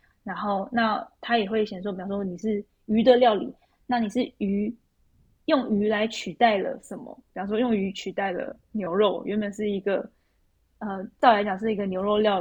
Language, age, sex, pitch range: Chinese, 10-29, female, 195-235 Hz